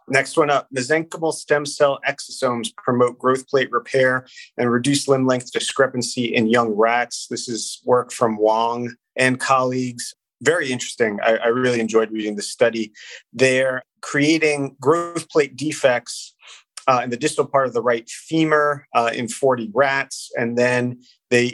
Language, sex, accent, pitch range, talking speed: English, male, American, 115-140 Hz, 155 wpm